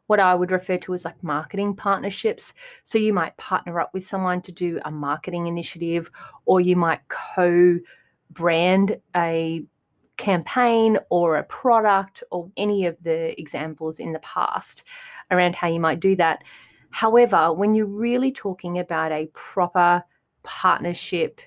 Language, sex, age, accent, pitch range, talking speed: English, female, 30-49, Australian, 165-205 Hz, 150 wpm